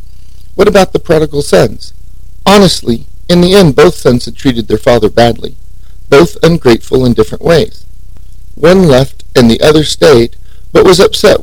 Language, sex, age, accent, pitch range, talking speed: English, male, 40-59, American, 95-155 Hz, 160 wpm